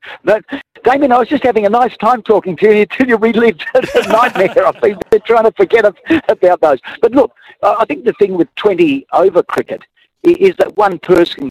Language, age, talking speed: English, 60-79, 205 wpm